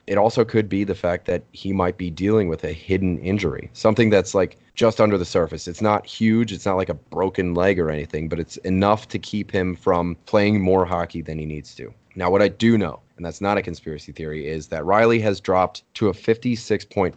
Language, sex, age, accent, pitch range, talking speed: English, male, 30-49, American, 85-110 Hz, 230 wpm